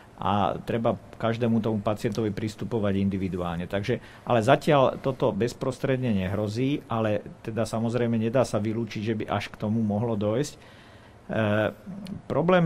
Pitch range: 105-125 Hz